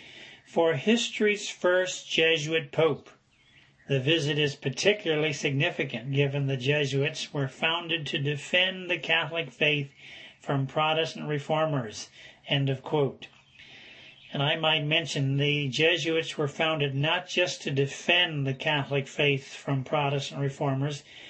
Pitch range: 140-165 Hz